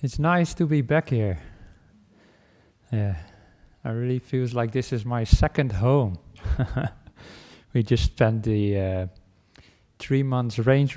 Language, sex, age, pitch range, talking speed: English, male, 20-39, 105-125 Hz, 130 wpm